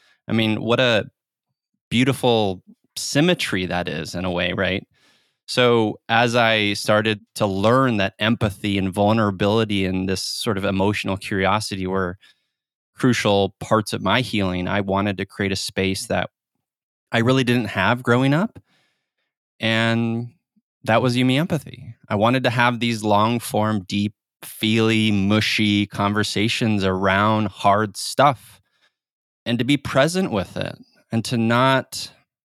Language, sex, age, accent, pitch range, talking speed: English, male, 20-39, American, 100-125 Hz, 135 wpm